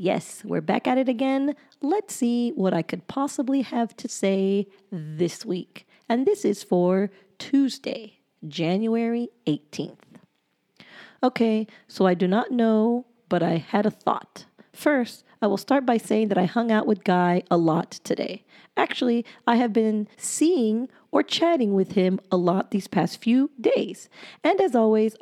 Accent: American